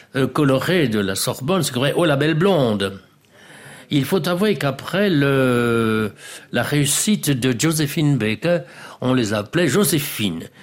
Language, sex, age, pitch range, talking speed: French, male, 60-79, 115-165 Hz, 140 wpm